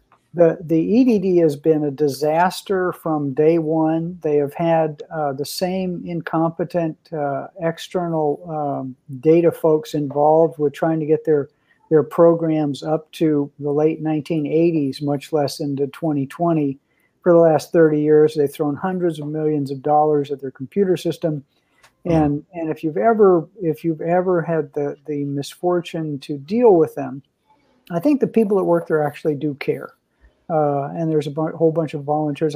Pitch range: 145-165 Hz